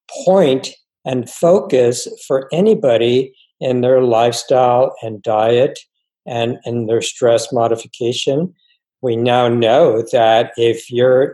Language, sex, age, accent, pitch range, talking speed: English, male, 60-79, American, 120-175 Hz, 110 wpm